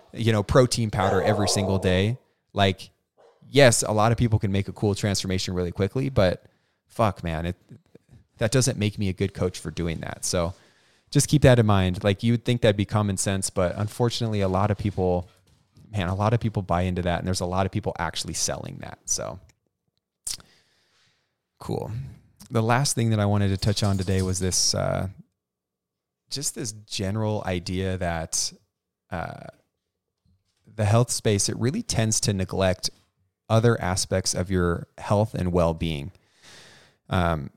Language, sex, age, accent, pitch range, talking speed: English, male, 30-49, American, 90-110 Hz, 170 wpm